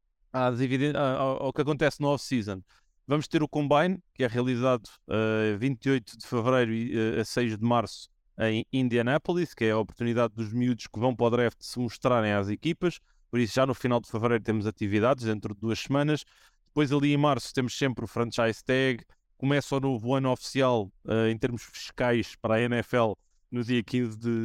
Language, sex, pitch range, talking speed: Portuguese, male, 115-140 Hz, 185 wpm